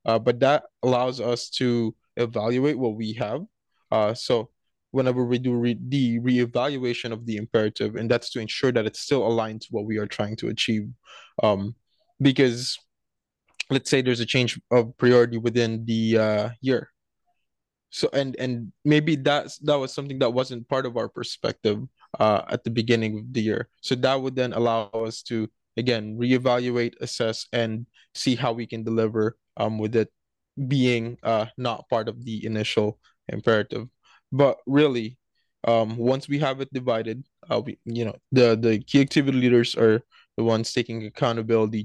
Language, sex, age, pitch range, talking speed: English, male, 20-39, 110-125 Hz, 170 wpm